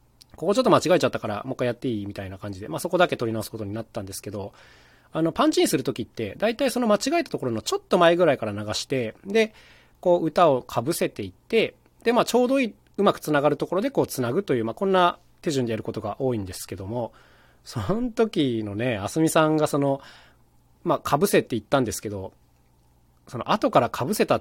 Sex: male